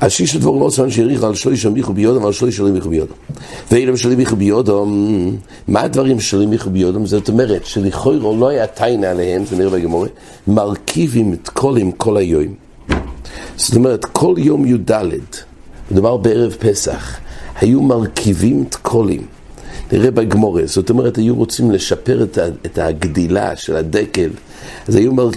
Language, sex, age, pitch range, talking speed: English, male, 50-69, 95-125 Hz, 120 wpm